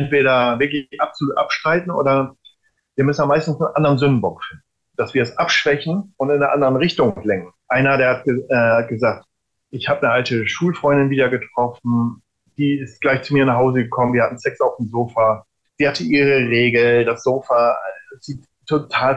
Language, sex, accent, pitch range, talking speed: German, male, German, 120-145 Hz, 185 wpm